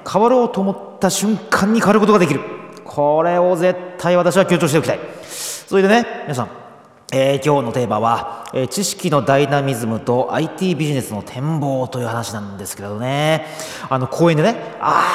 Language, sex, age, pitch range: Japanese, male, 30-49, 130-185 Hz